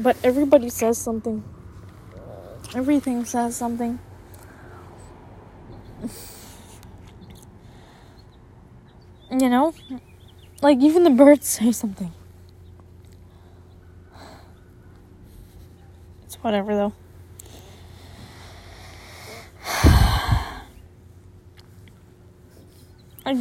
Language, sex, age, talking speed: English, female, 20-39, 50 wpm